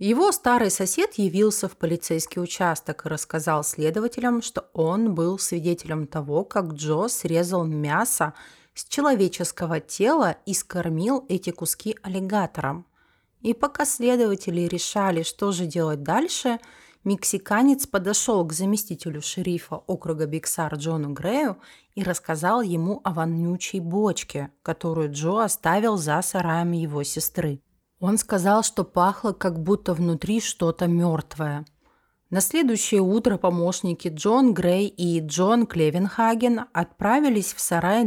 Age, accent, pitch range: 30-49, native, 160-210 Hz